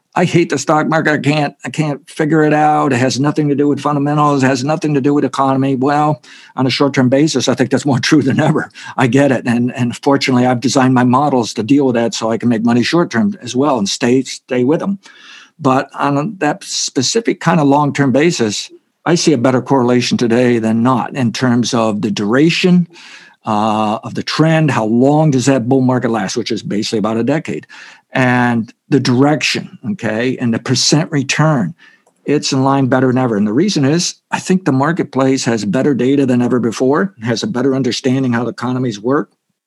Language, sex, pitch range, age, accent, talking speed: English, male, 120-150 Hz, 60-79, American, 205 wpm